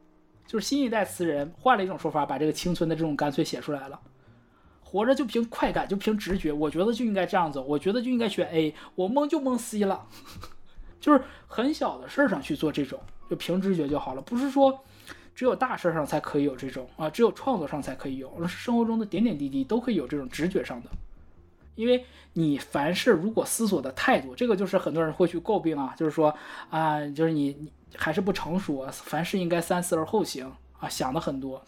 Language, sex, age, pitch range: Chinese, male, 20-39, 150-220 Hz